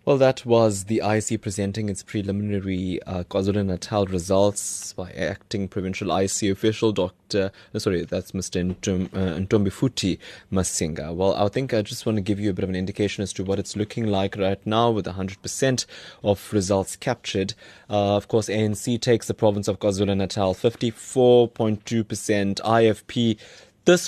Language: English